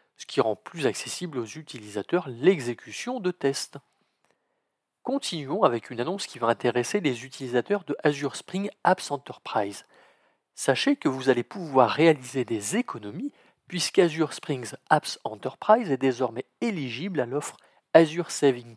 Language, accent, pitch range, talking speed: French, French, 125-190 Hz, 140 wpm